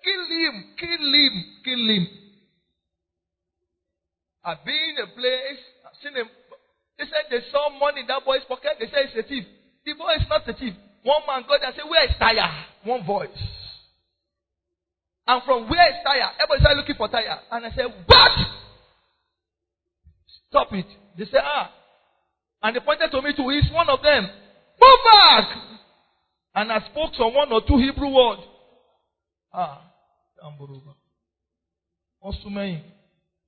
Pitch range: 185-285 Hz